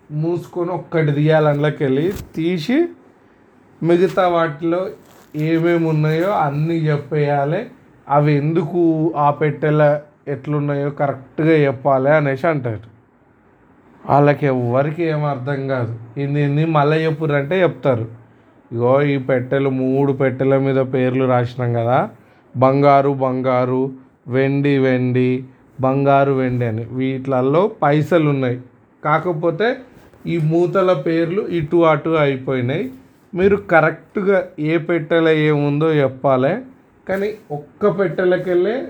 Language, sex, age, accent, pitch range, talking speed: Telugu, male, 30-49, native, 135-165 Hz, 95 wpm